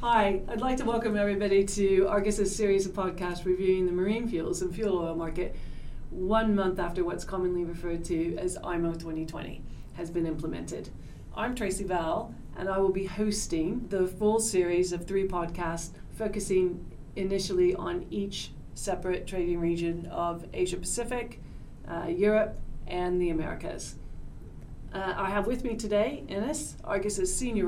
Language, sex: English, female